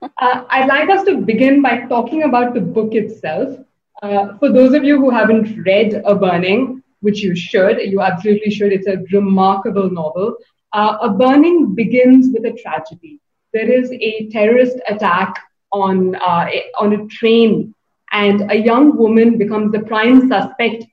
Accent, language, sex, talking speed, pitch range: native, Hindi, female, 165 wpm, 200-245 Hz